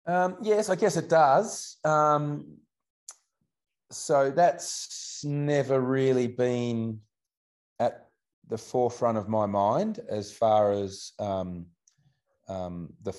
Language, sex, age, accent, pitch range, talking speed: English, male, 30-49, Australian, 95-120 Hz, 110 wpm